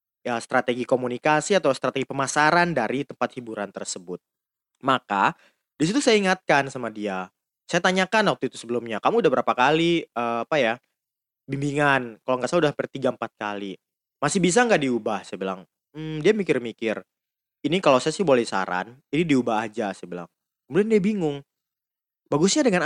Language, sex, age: Indonesian, male, 20-39